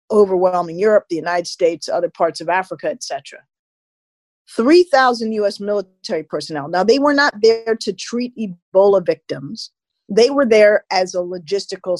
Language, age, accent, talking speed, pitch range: English, 50-69, American, 145 wpm, 195-255 Hz